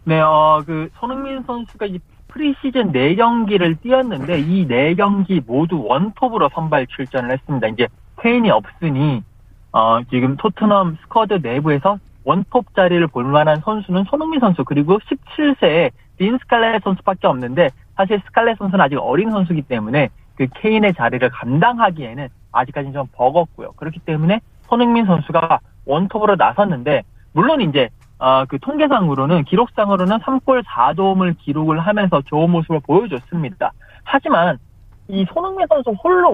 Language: Korean